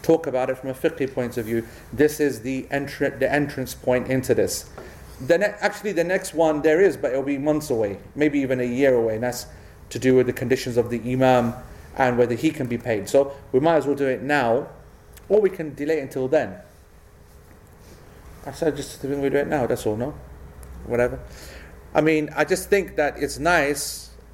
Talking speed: 210 wpm